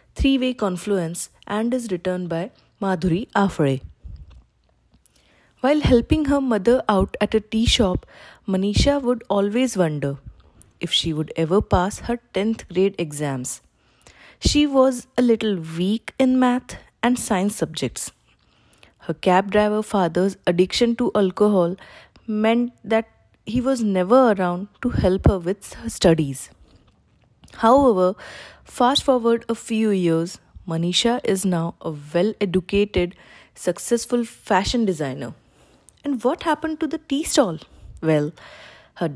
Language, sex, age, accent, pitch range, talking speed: Hindi, female, 20-39, native, 180-245 Hz, 130 wpm